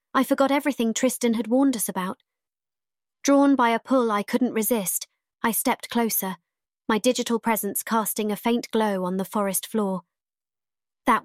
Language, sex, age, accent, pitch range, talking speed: English, female, 20-39, British, 210-255 Hz, 160 wpm